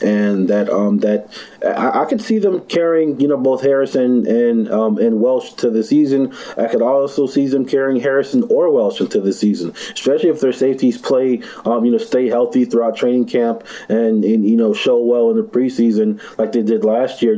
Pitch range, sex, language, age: 115-140 Hz, male, English, 20-39